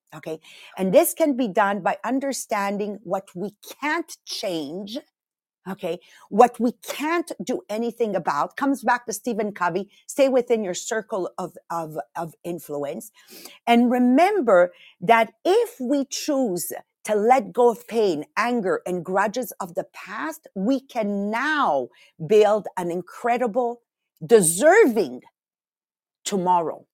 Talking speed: 125 wpm